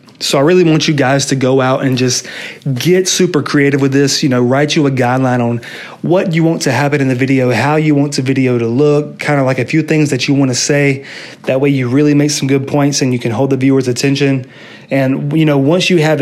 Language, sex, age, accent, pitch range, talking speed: English, male, 30-49, American, 130-150 Hz, 265 wpm